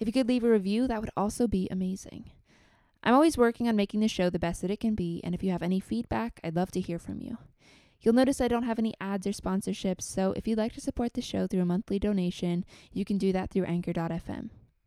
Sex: female